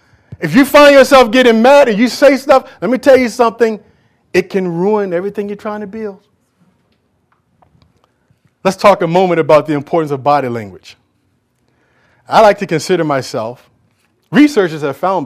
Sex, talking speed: male, 160 wpm